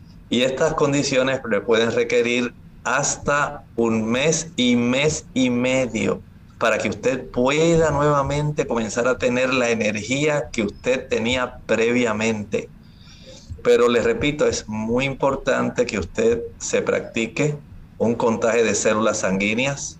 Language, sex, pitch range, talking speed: Spanish, male, 105-130 Hz, 125 wpm